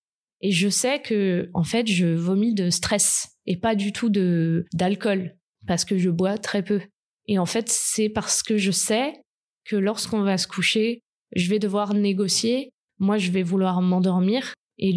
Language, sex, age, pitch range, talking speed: French, female, 20-39, 180-215 Hz, 180 wpm